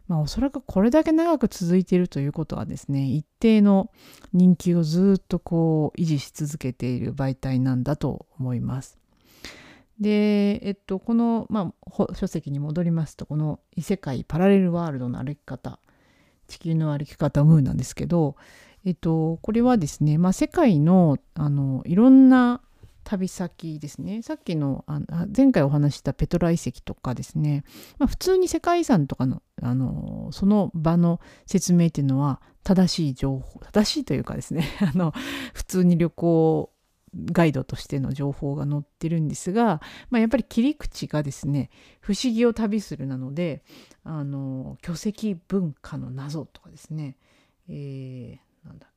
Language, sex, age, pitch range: Japanese, female, 40-59, 145-200 Hz